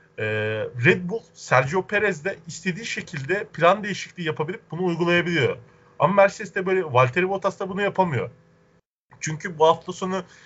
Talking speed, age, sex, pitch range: 140 wpm, 40-59, male, 130-185 Hz